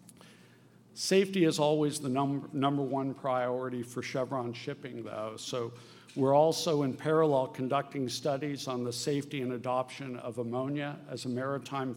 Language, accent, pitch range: English, American, 120-140 Hz